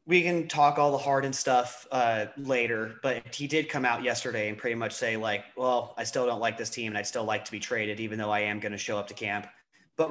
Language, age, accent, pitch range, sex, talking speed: English, 30-49, American, 110-125 Hz, male, 275 wpm